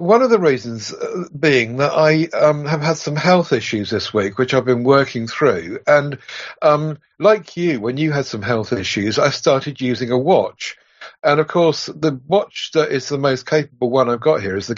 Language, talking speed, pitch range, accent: English, 205 wpm, 125-160 Hz, British